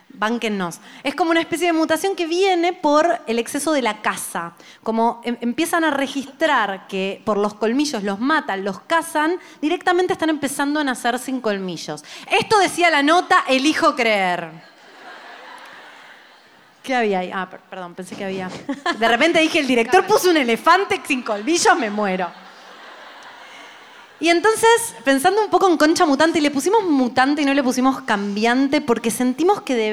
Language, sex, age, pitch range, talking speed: Spanish, female, 20-39, 225-320 Hz, 160 wpm